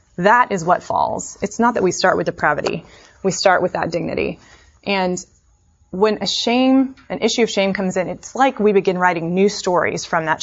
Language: English